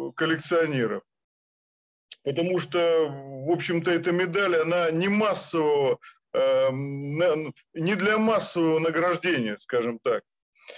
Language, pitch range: Russian, 150-215 Hz